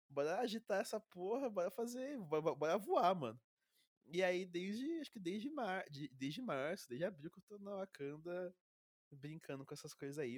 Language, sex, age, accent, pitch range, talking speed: Portuguese, male, 20-39, Brazilian, 130-180 Hz, 185 wpm